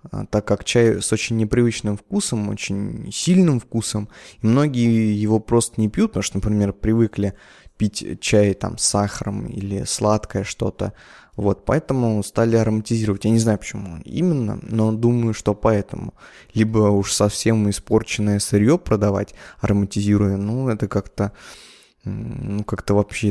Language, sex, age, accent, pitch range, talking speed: Russian, male, 20-39, native, 105-120 Hz, 140 wpm